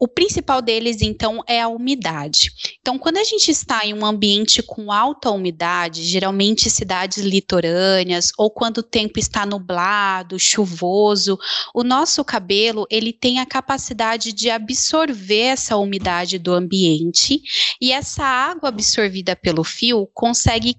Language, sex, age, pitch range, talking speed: English, female, 20-39, 210-270 Hz, 140 wpm